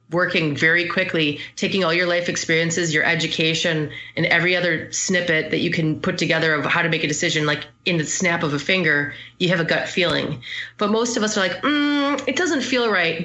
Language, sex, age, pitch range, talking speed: English, female, 30-49, 150-185 Hz, 215 wpm